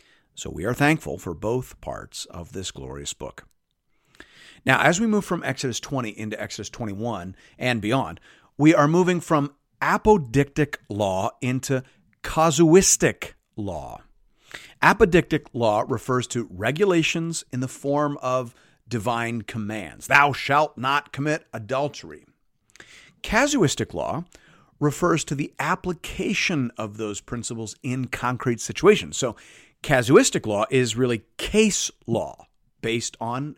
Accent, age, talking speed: American, 50-69, 125 wpm